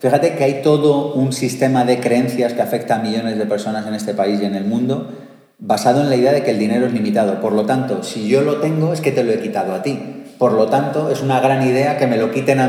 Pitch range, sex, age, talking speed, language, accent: 110-135 Hz, male, 30-49, 275 wpm, English, Spanish